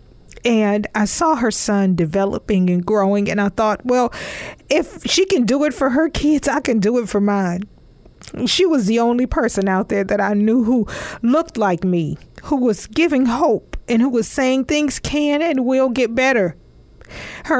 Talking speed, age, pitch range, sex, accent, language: 190 wpm, 40-59, 200-250 Hz, female, American, English